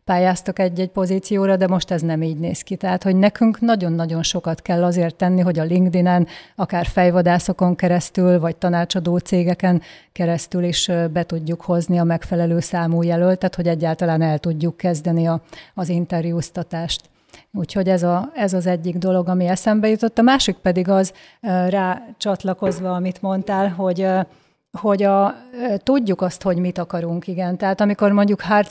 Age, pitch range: 30-49, 175-190 Hz